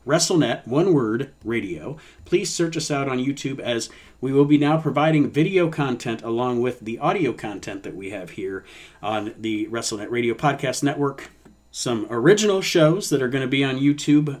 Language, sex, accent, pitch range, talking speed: English, male, American, 115-145 Hz, 180 wpm